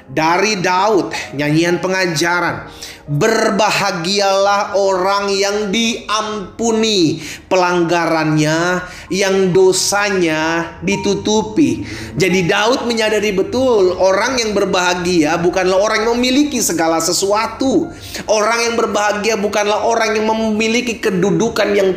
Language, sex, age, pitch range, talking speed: Indonesian, male, 30-49, 185-225 Hz, 95 wpm